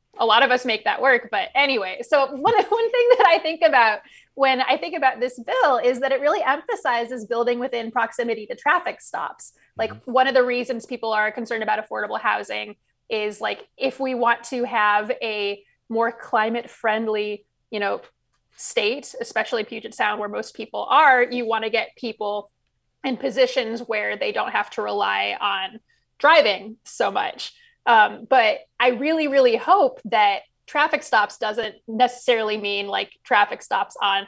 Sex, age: female, 20-39